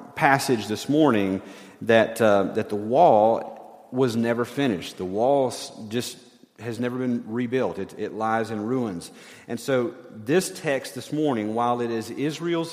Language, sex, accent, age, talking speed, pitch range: English, male, American, 40-59, 155 wpm, 110-155 Hz